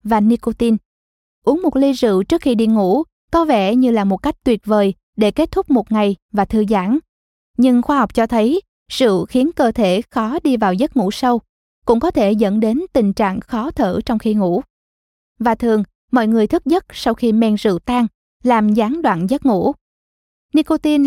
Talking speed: 200 wpm